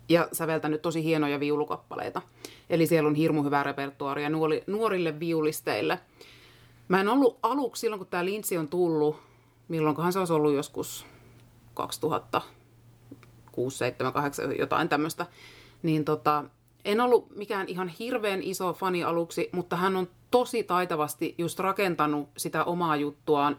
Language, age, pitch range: Finnish, 30-49, 145-175 Hz